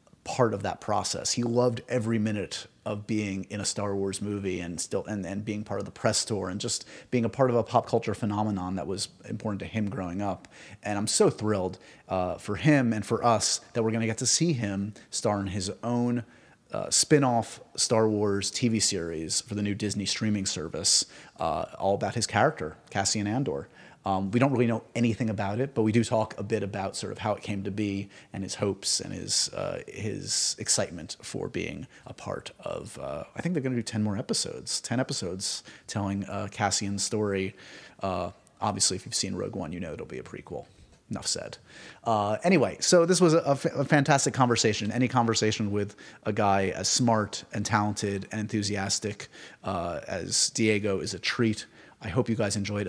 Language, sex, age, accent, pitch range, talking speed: English, male, 30-49, American, 100-115 Hz, 205 wpm